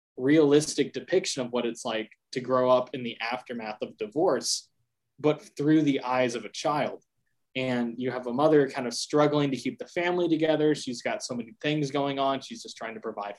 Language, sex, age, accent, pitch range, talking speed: English, male, 20-39, American, 120-150 Hz, 205 wpm